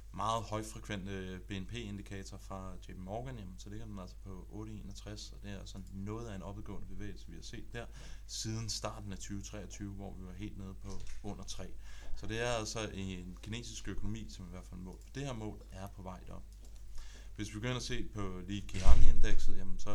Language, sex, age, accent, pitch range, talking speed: Danish, male, 30-49, native, 95-105 Hz, 210 wpm